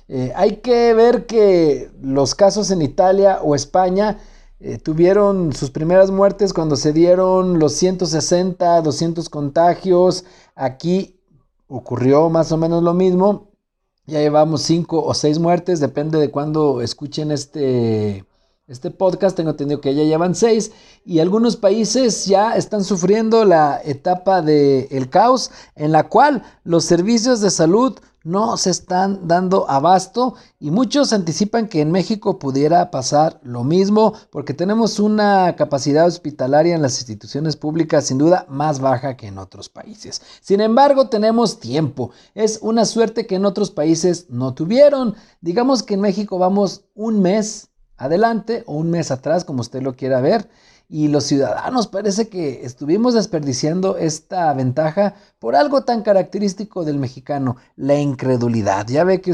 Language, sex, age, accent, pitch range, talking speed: Spanish, male, 50-69, Mexican, 145-205 Hz, 150 wpm